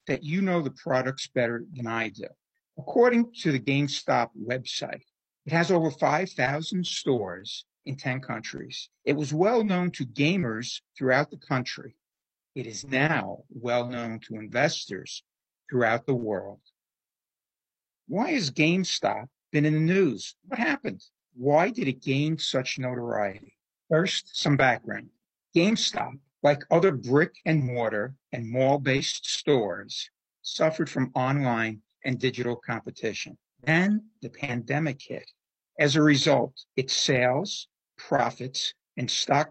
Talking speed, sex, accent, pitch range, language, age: 130 wpm, male, American, 125-160 Hz, English, 60-79